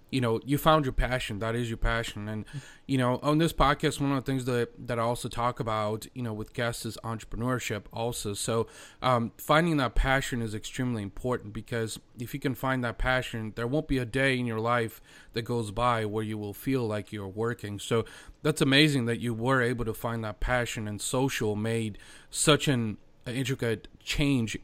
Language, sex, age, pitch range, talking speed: English, male, 30-49, 115-135 Hz, 205 wpm